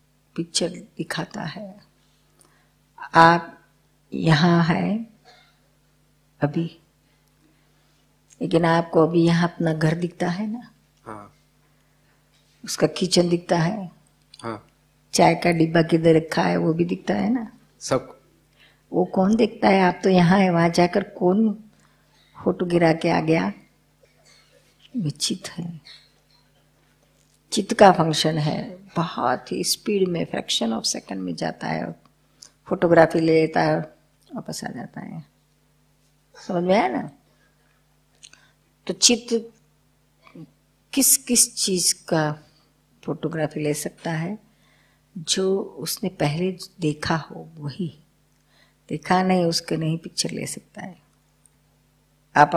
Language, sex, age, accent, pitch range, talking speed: Hindi, female, 50-69, native, 155-190 Hz, 115 wpm